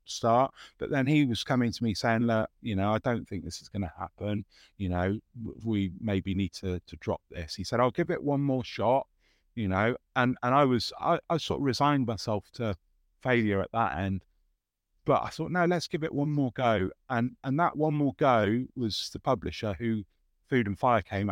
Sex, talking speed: male, 220 wpm